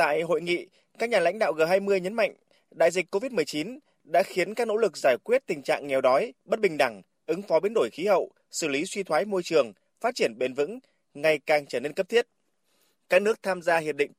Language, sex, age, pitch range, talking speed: Vietnamese, male, 20-39, 160-215 Hz, 235 wpm